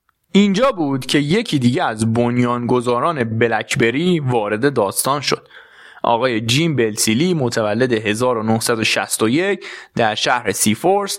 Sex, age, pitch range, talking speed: male, 20-39, 115-150 Hz, 105 wpm